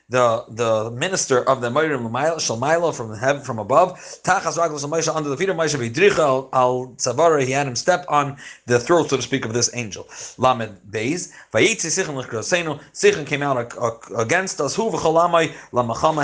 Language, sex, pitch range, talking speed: English, male, 125-170 Hz, 170 wpm